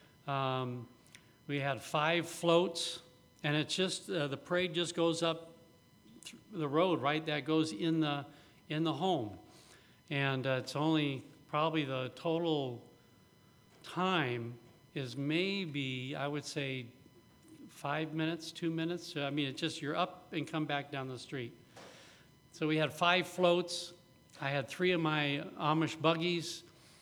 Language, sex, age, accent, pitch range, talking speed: English, male, 60-79, American, 135-165 Hz, 145 wpm